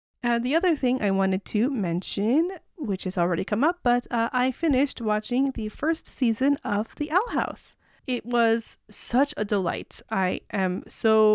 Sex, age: female, 30-49